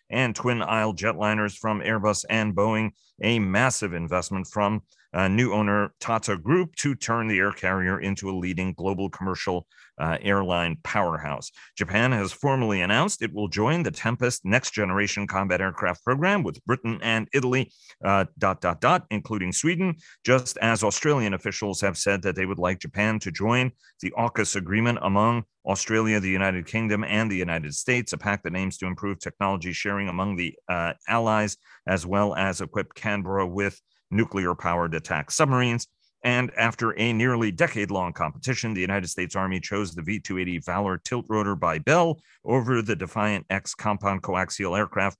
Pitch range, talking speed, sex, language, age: 95-115 Hz, 165 wpm, male, English, 40-59